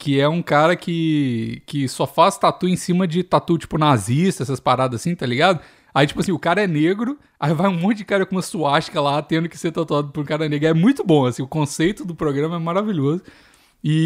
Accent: Brazilian